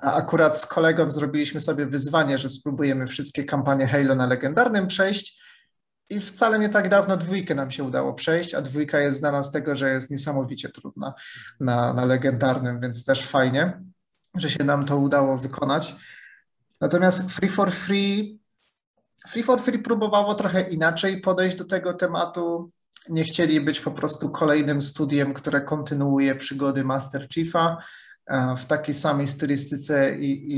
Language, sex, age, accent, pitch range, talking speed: Polish, male, 30-49, native, 135-170 Hz, 155 wpm